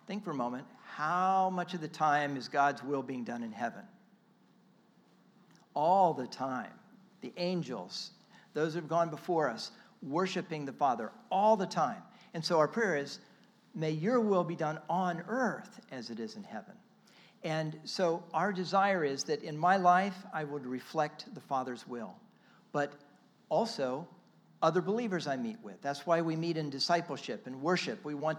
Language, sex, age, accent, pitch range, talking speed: English, male, 50-69, American, 145-205 Hz, 175 wpm